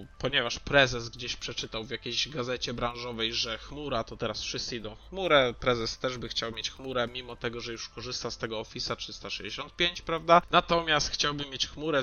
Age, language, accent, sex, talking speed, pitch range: 20-39, Polish, native, male, 175 wpm, 120-140 Hz